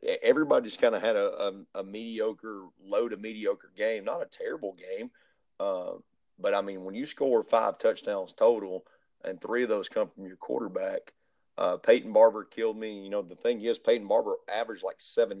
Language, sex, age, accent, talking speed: English, male, 40-59, American, 185 wpm